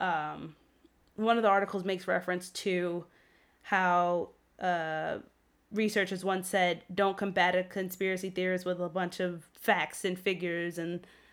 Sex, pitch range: female, 180-200 Hz